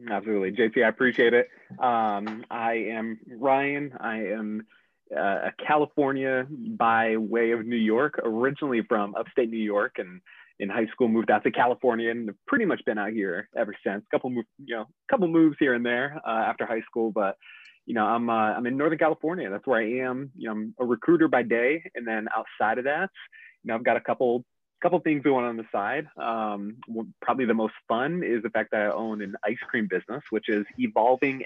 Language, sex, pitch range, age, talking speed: English, male, 110-135 Hz, 30-49, 210 wpm